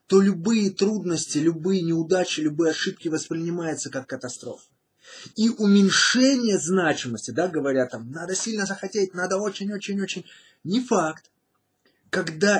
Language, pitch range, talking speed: Russian, 150-200 Hz, 110 wpm